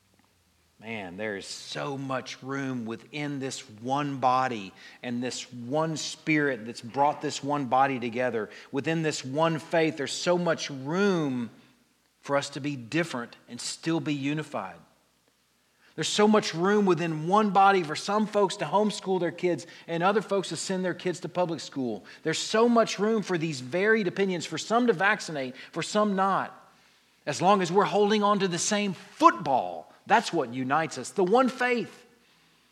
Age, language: 40-59, English